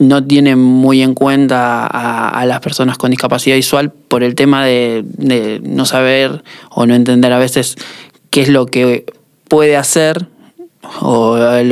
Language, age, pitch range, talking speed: Spanish, 20-39, 125-140 Hz, 160 wpm